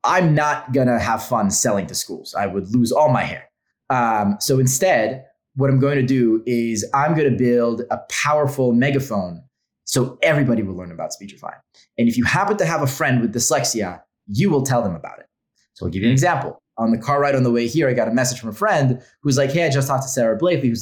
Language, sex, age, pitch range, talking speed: English, male, 20-39, 115-140 Hz, 240 wpm